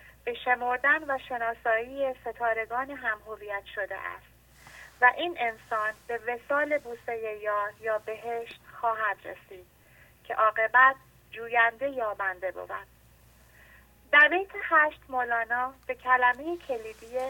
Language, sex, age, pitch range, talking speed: English, female, 30-49, 220-290 Hz, 110 wpm